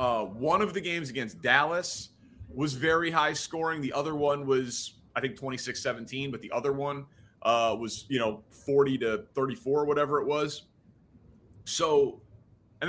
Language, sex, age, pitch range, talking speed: English, male, 30-49, 125-170 Hz, 160 wpm